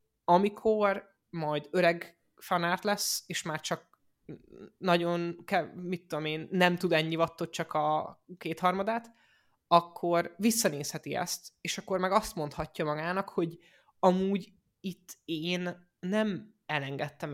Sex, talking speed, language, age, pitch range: male, 120 wpm, Hungarian, 20-39, 155-185 Hz